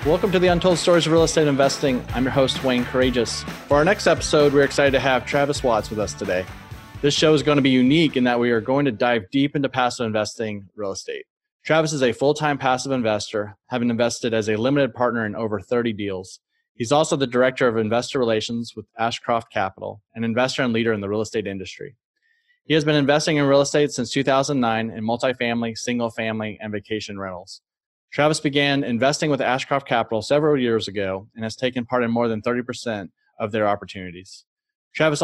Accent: American